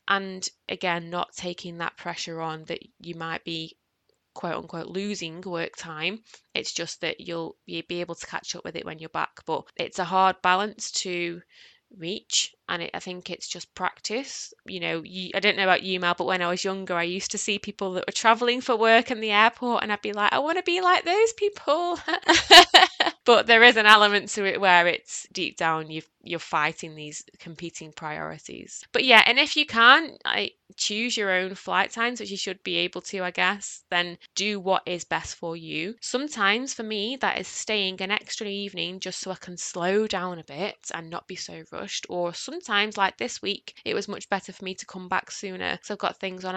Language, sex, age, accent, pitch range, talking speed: English, female, 20-39, British, 175-225 Hz, 220 wpm